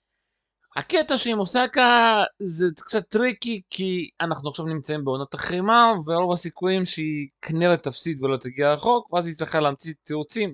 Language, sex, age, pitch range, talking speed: Hebrew, male, 30-49, 135-185 Hz, 140 wpm